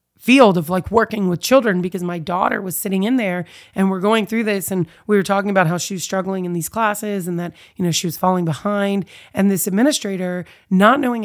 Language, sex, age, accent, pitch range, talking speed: English, female, 30-49, American, 180-210 Hz, 230 wpm